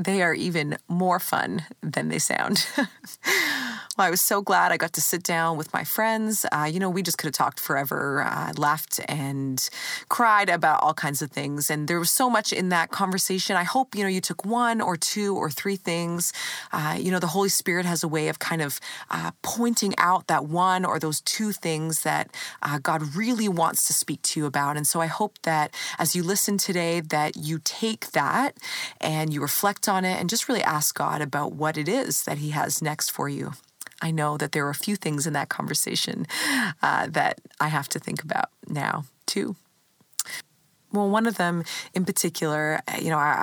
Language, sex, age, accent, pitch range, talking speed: English, female, 30-49, American, 155-195 Hz, 210 wpm